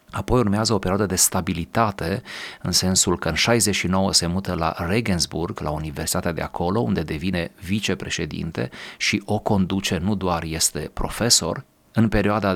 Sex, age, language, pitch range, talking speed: male, 30-49, Romanian, 80-100 Hz, 150 wpm